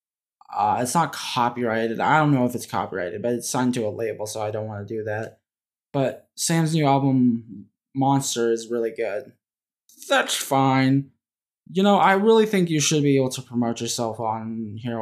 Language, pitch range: English, 115-145 Hz